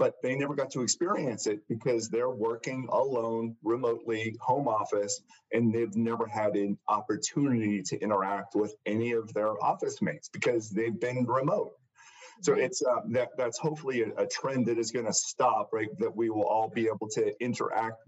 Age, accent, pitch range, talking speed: 40-59, American, 105-125 Hz, 180 wpm